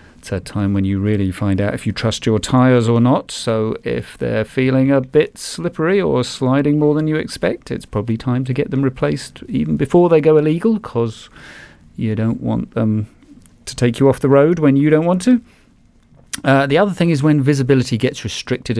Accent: British